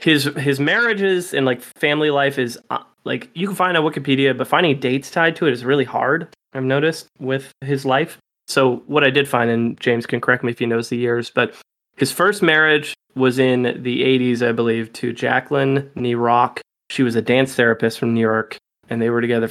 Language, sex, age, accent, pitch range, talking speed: English, male, 20-39, American, 120-140 Hz, 215 wpm